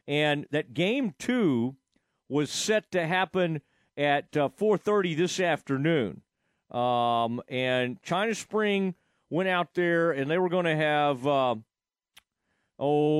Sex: male